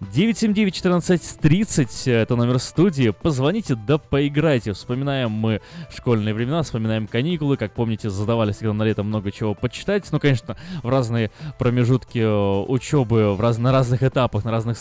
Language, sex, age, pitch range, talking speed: Russian, male, 20-39, 105-140 Hz, 140 wpm